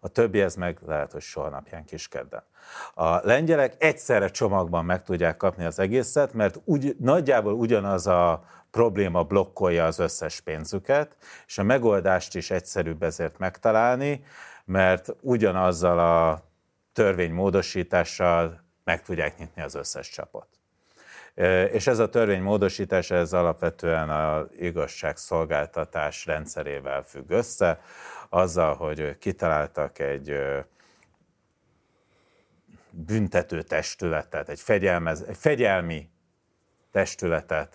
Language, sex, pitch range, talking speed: Hungarian, male, 80-95 Hz, 105 wpm